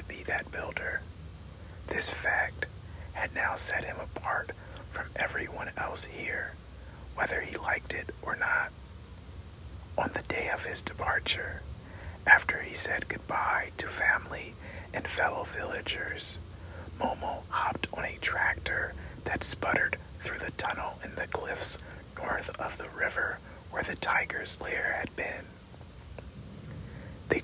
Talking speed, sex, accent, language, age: 125 wpm, male, American, English, 40-59